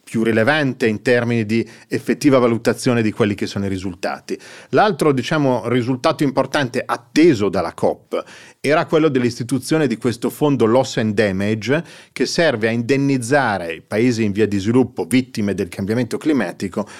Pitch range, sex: 105-130 Hz, male